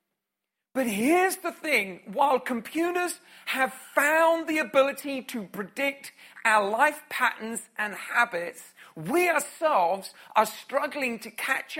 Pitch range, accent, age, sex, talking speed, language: 210-270 Hz, British, 50-69, male, 115 wpm, English